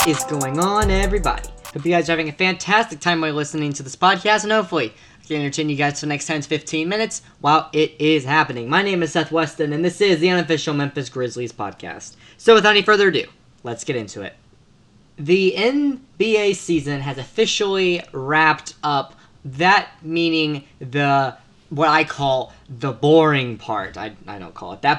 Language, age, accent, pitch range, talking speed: English, 10-29, American, 140-180 Hz, 185 wpm